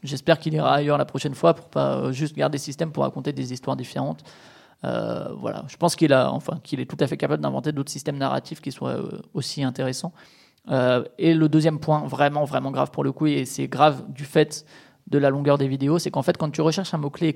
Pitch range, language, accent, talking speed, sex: 135-165 Hz, French, French, 240 wpm, male